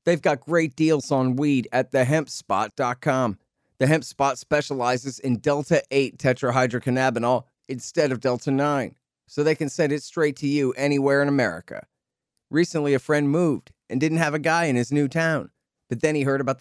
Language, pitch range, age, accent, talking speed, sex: English, 115-145 Hz, 40-59, American, 170 wpm, male